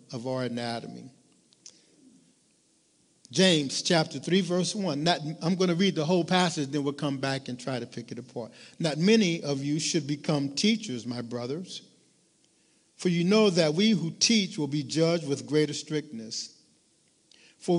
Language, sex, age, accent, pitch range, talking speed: English, male, 50-69, American, 145-180 Hz, 160 wpm